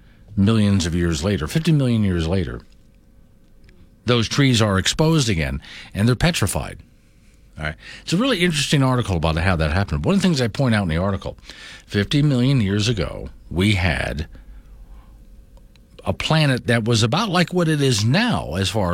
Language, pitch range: English, 90-130 Hz